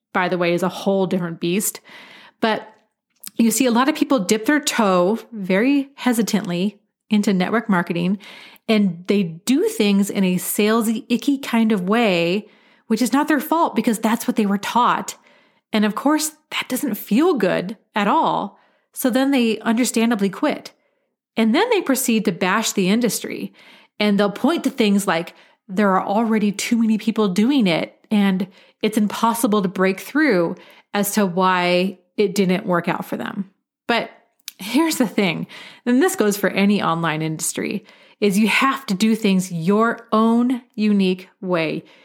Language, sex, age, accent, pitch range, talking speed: English, female, 30-49, American, 195-245 Hz, 165 wpm